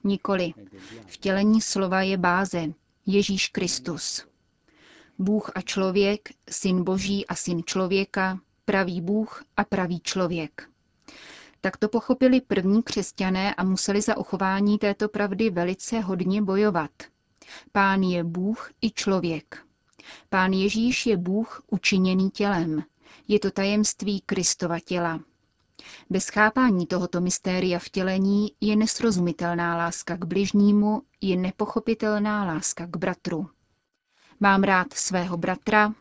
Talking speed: 120 wpm